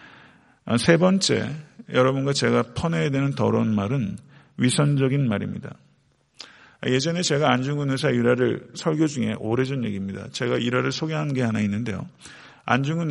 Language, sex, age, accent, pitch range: Korean, male, 50-69, native, 115-145 Hz